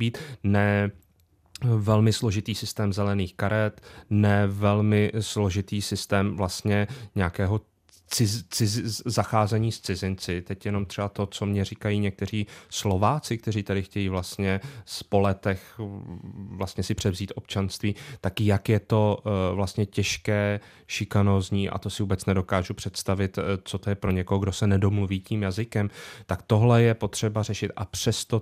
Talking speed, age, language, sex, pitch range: 140 wpm, 30-49, Czech, male, 100-110 Hz